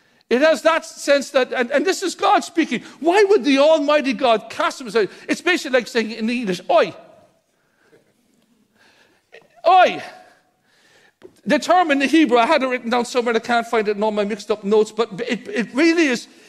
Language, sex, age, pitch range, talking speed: English, male, 60-79, 240-295 Hz, 195 wpm